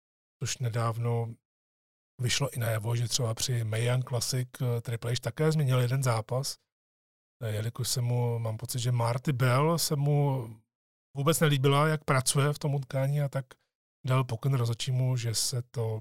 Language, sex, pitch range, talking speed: Czech, male, 120-145 Hz, 155 wpm